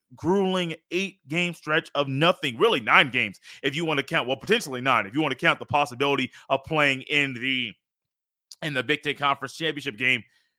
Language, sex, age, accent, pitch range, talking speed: English, male, 30-49, American, 135-180 Hz, 200 wpm